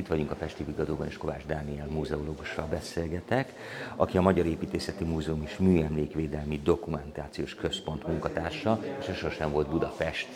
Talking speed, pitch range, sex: 140 wpm, 75-95 Hz, male